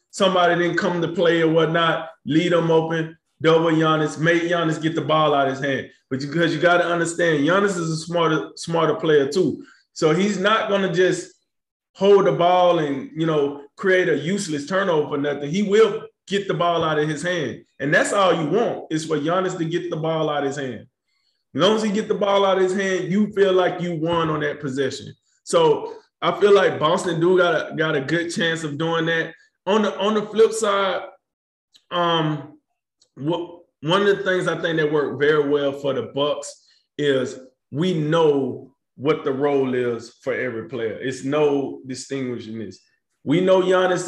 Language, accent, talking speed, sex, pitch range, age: English, American, 205 wpm, male, 150-180 Hz, 20-39